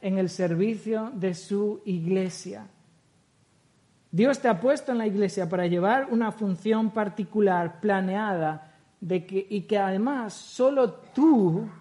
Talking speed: 120 wpm